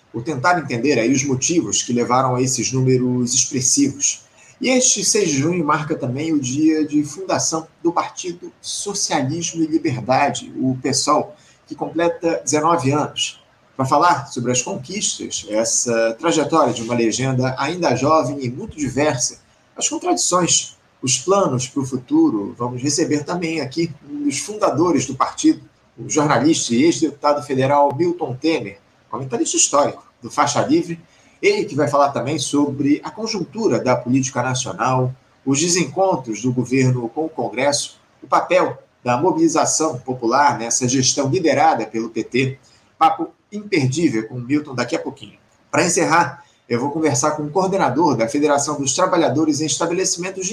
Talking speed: 150 wpm